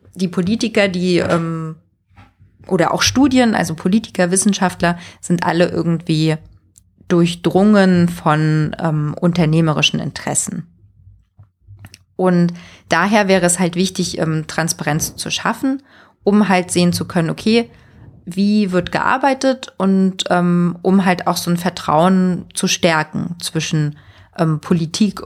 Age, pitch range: 30-49, 155-190 Hz